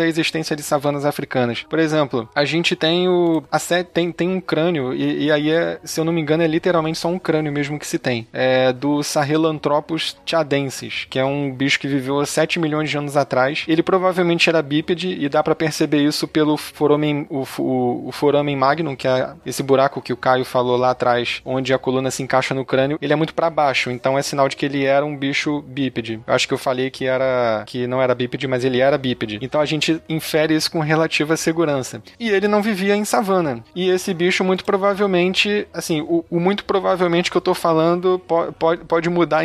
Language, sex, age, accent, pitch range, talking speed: Portuguese, male, 20-39, Brazilian, 135-170 Hz, 220 wpm